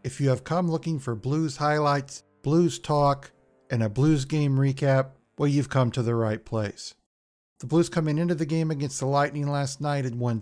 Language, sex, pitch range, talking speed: English, male, 120-150 Hz, 200 wpm